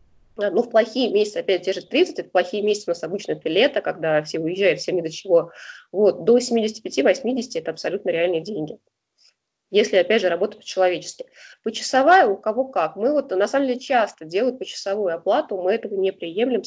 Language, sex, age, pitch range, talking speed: Russian, female, 20-39, 180-240 Hz, 185 wpm